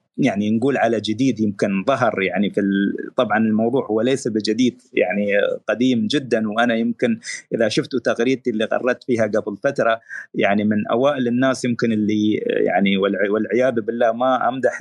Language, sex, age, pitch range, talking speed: Arabic, male, 30-49, 115-140 Hz, 160 wpm